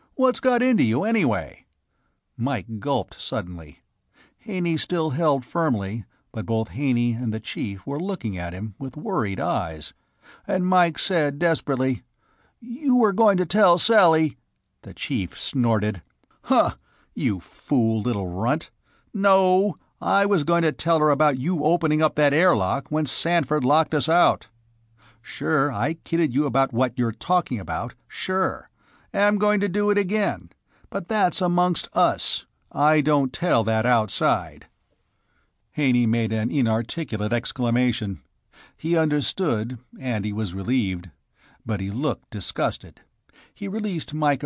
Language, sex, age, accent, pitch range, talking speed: English, male, 50-69, American, 110-165 Hz, 140 wpm